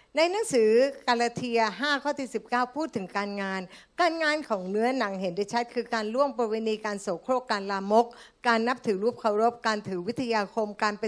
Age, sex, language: 60-79, female, Thai